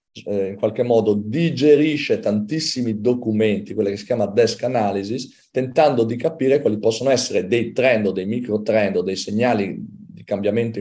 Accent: native